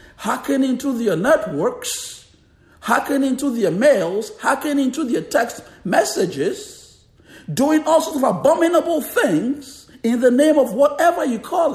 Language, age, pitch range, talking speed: English, 60-79, 180-275 Hz, 135 wpm